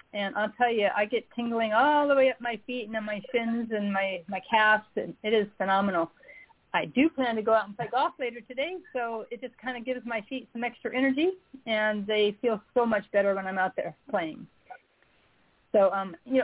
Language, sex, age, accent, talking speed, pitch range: English, female, 40-59, American, 225 wpm, 200-240 Hz